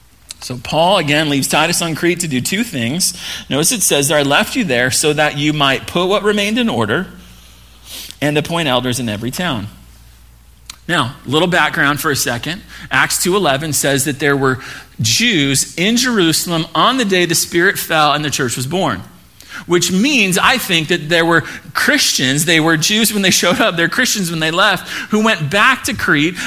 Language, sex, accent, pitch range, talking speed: English, male, American, 130-185 Hz, 195 wpm